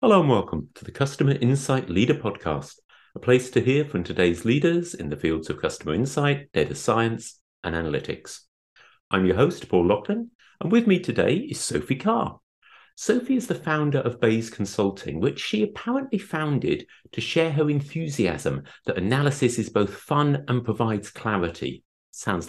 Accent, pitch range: British, 100-160 Hz